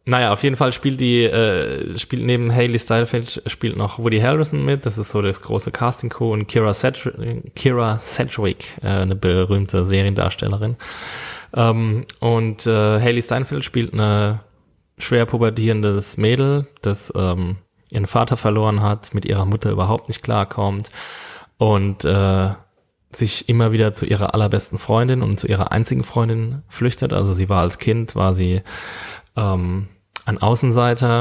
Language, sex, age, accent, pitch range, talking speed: German, male, 10-29, German, 100-115 Hz, 150 wpm